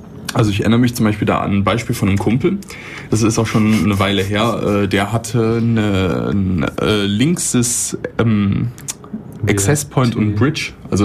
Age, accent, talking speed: 30-49, German, 165 wpm